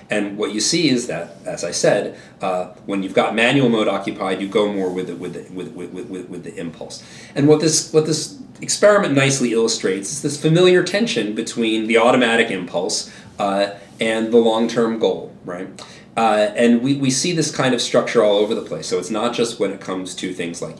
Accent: American